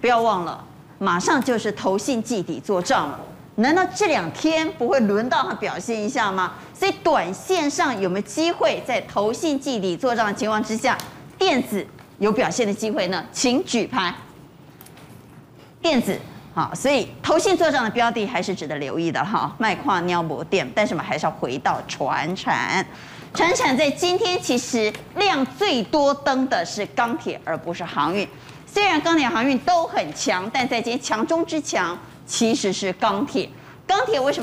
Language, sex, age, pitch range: Chinese, female, 30-49, 195-305 Hz